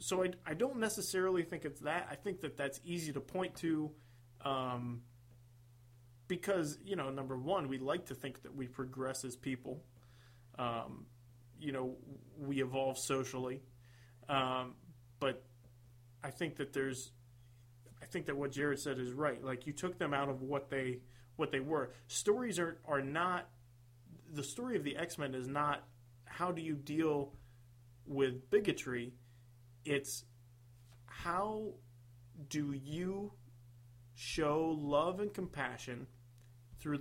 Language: English